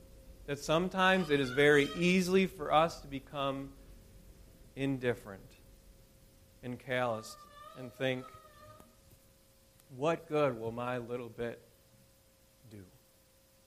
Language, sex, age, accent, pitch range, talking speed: English, male, 40-59, American, 125-190 Hz, 95 wpm